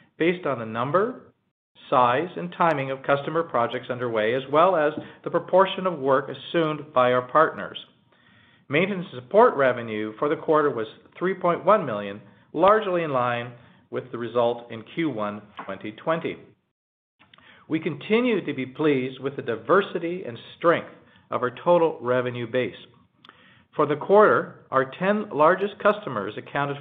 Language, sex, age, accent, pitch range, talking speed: English, male, 50-69, American, 120-170 Hz, 140 wpm